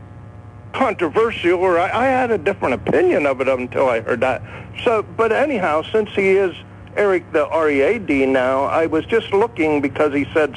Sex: male